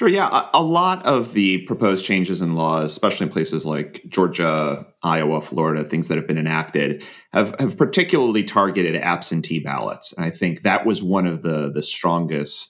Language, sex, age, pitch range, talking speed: English, male, 30-49, 85-105 Hz, 185 wpm